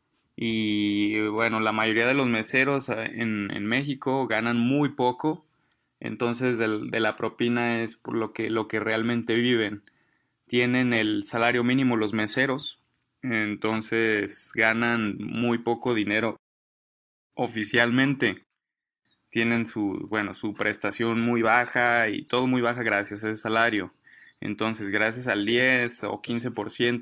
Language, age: English, 20-39